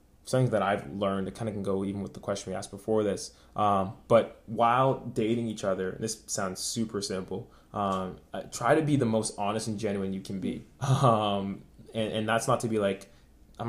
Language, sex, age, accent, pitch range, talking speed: English, male, 20-39, American, 100-110 Hz, 215 wpm